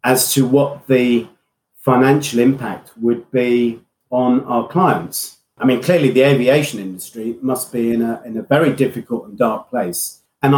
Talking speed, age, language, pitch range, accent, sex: 165 wpm, 40-59, English, 120-145 Hz, British, male